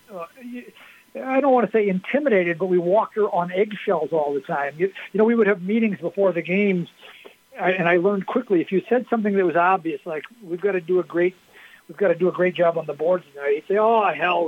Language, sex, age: English, male, 60-79